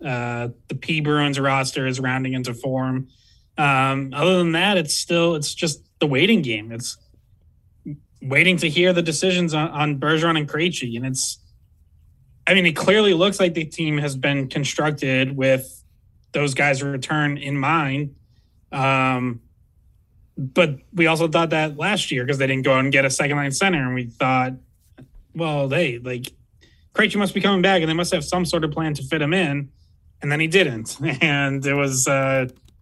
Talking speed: 185 wpm